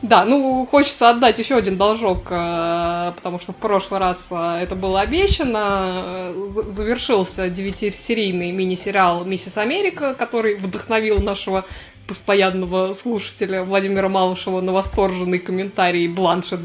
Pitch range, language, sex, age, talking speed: 185-225 Hz, Russian, female, 20-39, 110 wpm